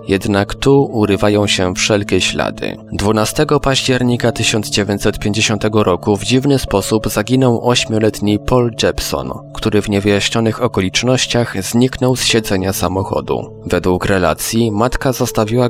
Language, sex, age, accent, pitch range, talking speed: Polish, male, 20-39, native, 95-115 Hz, 110 wpm